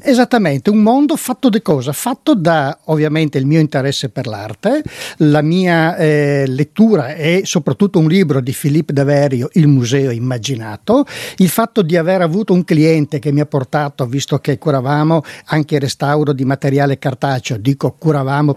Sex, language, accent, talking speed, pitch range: male, Italian, native, 160 wpm, 135-175 Hz